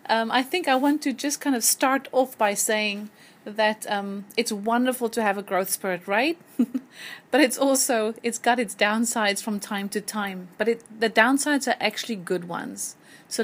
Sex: female